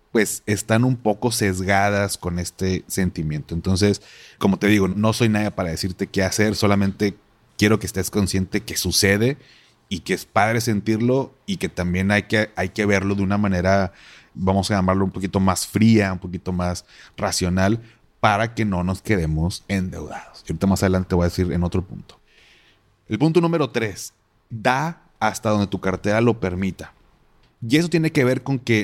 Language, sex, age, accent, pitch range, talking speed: Spanish, male, 30-49, Mexican, 95-120 Hz, 185 wpm